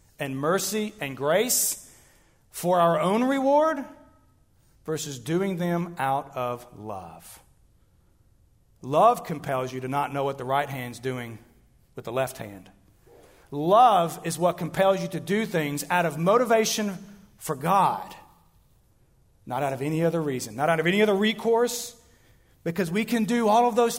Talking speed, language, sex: 155 wpm, English, male